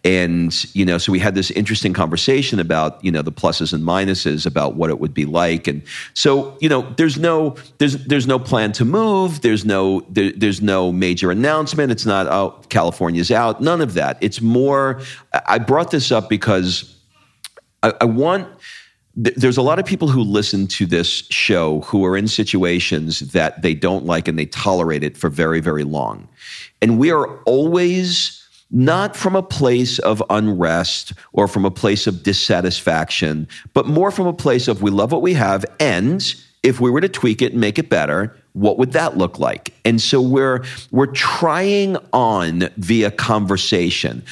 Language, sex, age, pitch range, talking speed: English, male, 50-69, 95-135 Hz, 185 wpm